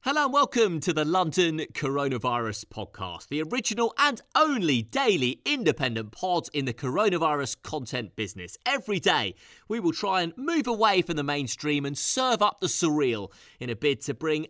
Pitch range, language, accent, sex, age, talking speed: 130-195 Hz, English, British, male, 30-49, 170 wpm